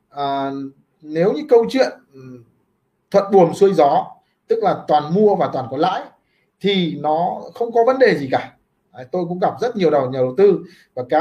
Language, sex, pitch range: Vietnamese, male, 155-235 Hz